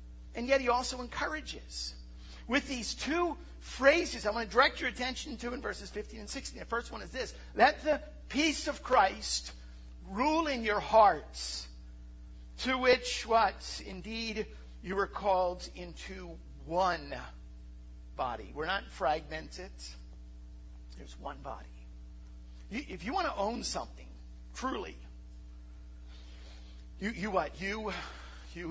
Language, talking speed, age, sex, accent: English, 130 wpm, 50-69, male, American